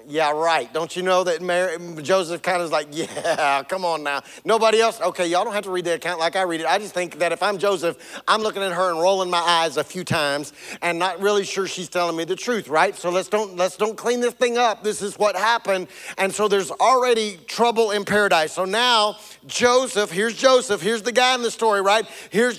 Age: 40-59